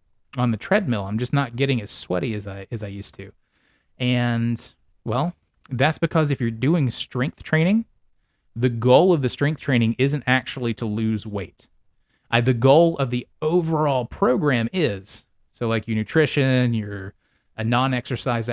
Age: 20-39